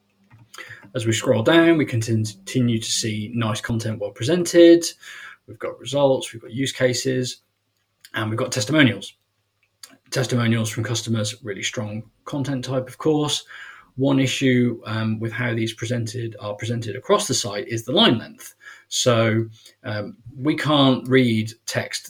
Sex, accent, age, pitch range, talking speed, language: male, British, 20-39, 105-130 Hz, 145 wpm, English